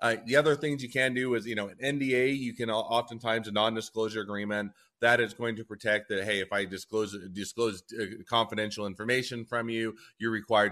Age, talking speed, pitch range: 30-49, 195 wpm, 95-115 Hz